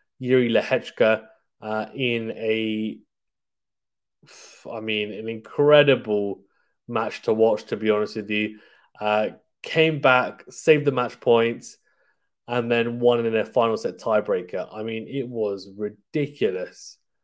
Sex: male